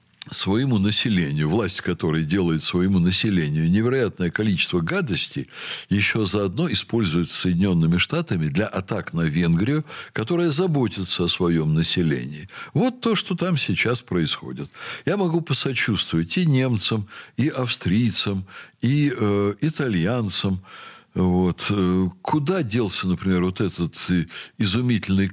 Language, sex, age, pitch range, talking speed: Russian, male, 60-79, 90-145 Hz, 110 wpm